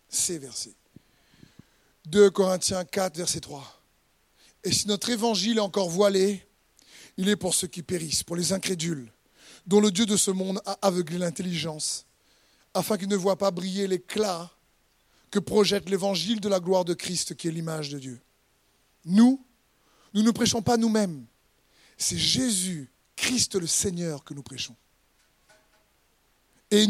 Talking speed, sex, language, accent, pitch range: 150 wpm, male, French, French, 165-205 Hz